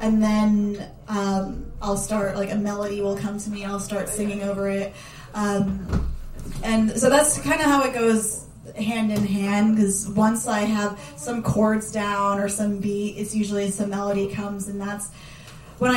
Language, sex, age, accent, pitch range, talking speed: English, female, 10-29, American, 200-220 Hz, 180 wpm